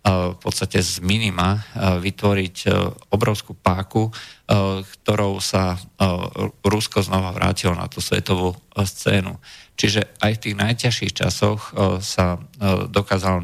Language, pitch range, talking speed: Slovak, 95-105 Hz, 105 wpm